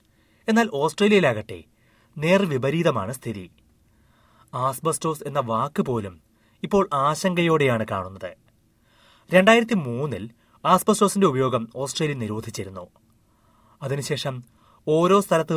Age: 30-49